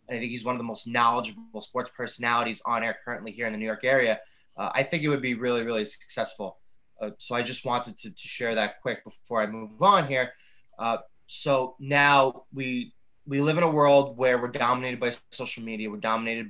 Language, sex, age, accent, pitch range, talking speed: English, male, 20-39, American, 120-145 Hz, 220 wpm